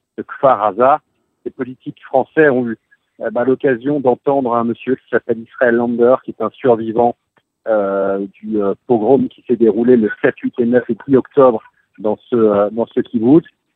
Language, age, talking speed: French, 50-69, 180 wpm